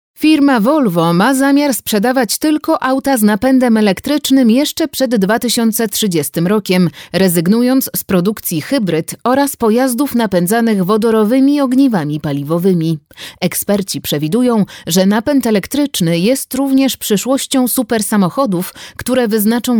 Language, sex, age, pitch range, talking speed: Polish, female, 30-49, 180-255 Hz, 110 wpm